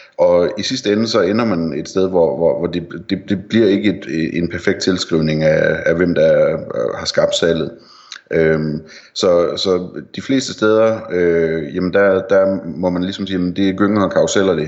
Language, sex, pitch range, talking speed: Danish, male, 80-100 Hz, 200 wpm